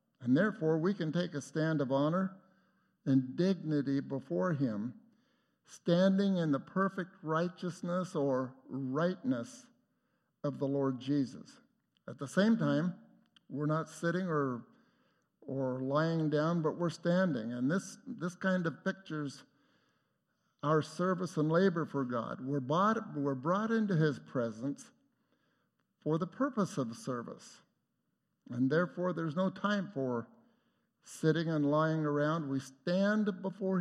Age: 60-79